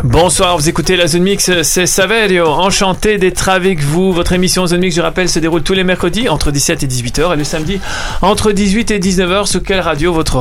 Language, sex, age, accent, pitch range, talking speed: French, male, 40-59, French, 145-185 Hz, 220 wpm